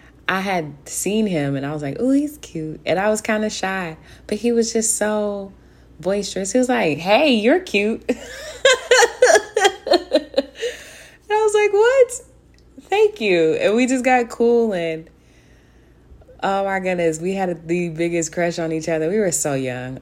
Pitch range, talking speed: 140-210 Hz, 170 wpm